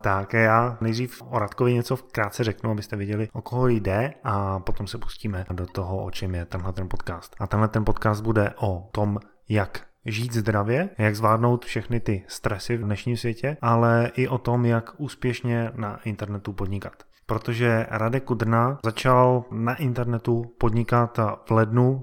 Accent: native